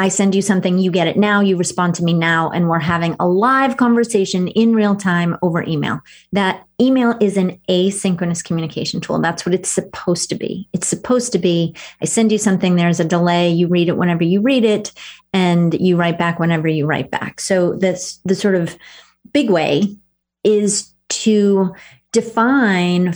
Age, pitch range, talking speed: 30-49, 175-205 Hz, 190 wpm